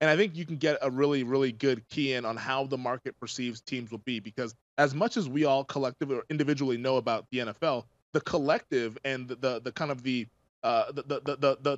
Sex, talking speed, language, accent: male, 240 wpm, English, American